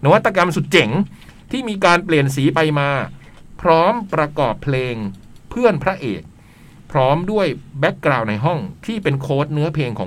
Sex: male